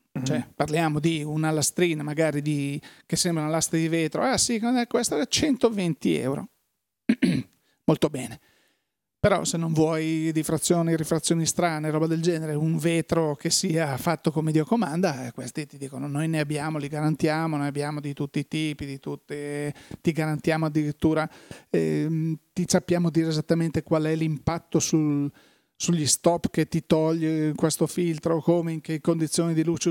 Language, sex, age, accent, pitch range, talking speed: Italian, male, 40-59, native, 155-175 Hz, 160 wpm